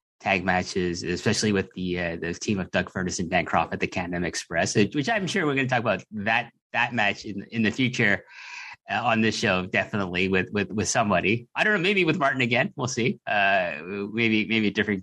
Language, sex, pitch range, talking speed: English, male, 90-115 Hz, 220 wpm